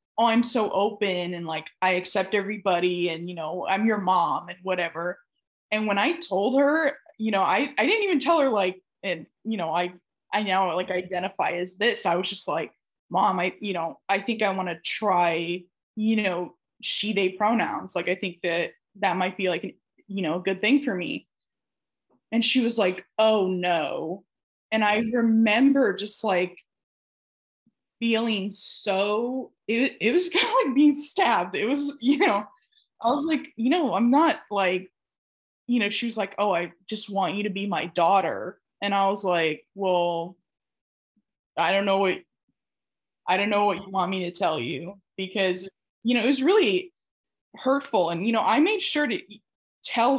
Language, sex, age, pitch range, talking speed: English, female, 10-29, 180-235 Hz, 185 wpm